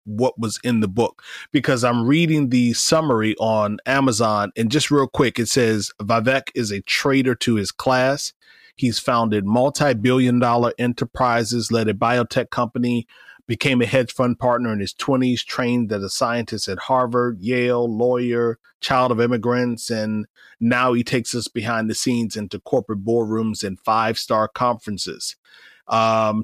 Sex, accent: male, American